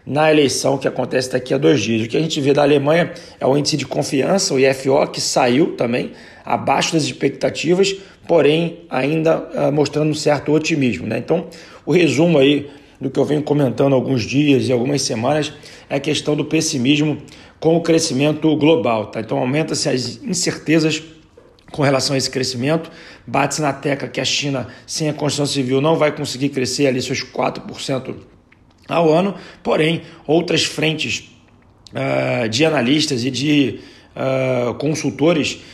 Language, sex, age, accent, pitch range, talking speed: Portuguese, male, 40-59, Brazilian, 130-155 Hz, 165 wpm